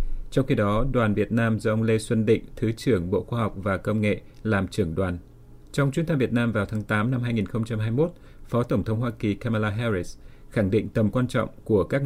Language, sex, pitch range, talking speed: Vietnamese, male, 100-120 Hz, 230 wpm